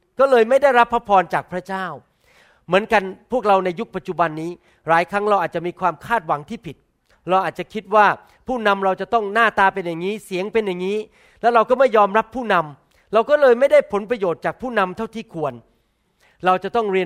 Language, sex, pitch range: Thai, male, 180-225 Hz